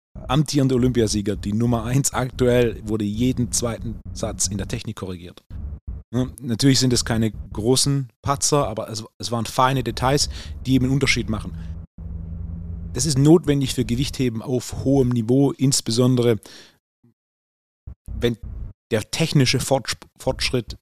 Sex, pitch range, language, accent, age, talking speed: male, 90-115 Hz, German, German, 30-49, 125 wpm